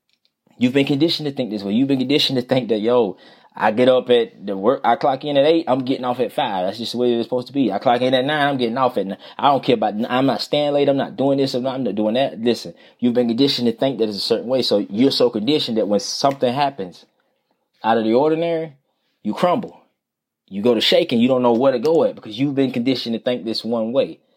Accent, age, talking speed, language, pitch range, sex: American, 20-39, 275 wpm, English, 115-135 Hz, male